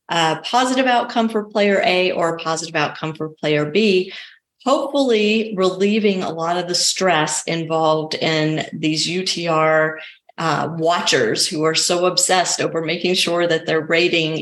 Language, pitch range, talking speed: English, 165-225 Hz, 150 wpm